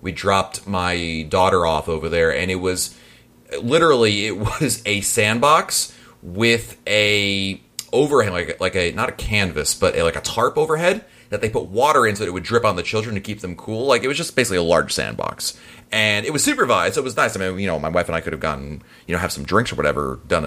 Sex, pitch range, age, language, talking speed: male, 90-115 Hz, 30-49, English, 250 wpm